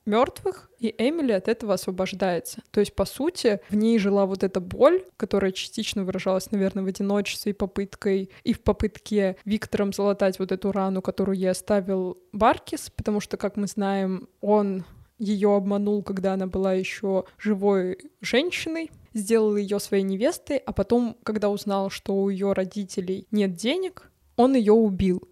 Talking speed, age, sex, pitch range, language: 160 wpm, 20-39, female, 195-220 Hz, Russian